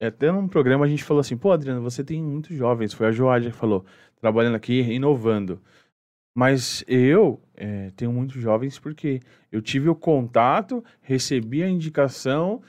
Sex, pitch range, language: male, 115-155 Hz, Portuguese